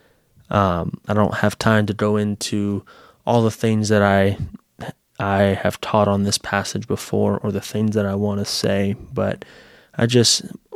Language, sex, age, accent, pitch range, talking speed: English, male, 20-39, American, 100-110 Hz, 175 wpm